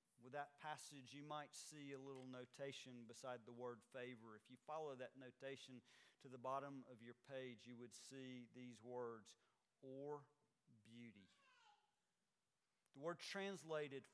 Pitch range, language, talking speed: 130-175 Hz, English, 145 wpm